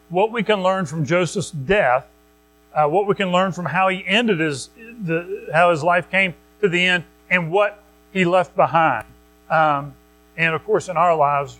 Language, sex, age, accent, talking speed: English, male, 40-59, American, 190 wpm